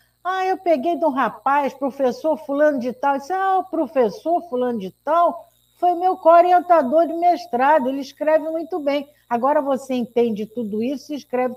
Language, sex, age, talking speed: Portuguese, female, 60-79, 170 wpm